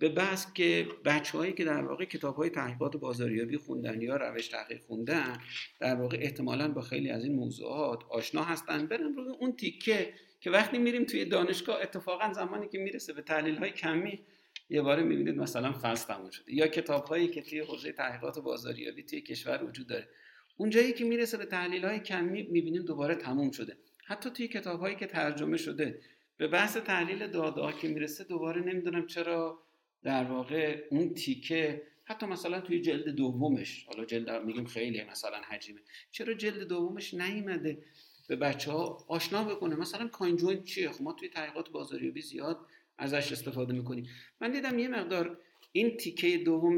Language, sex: Persian, male